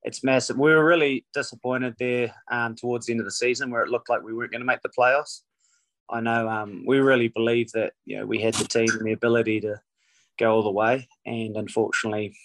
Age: 20-39